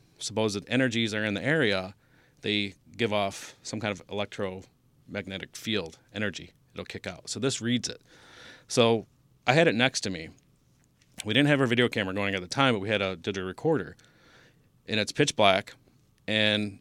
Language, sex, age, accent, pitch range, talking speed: English, male, 30-49, American, 105-130 Hz, 180 wpm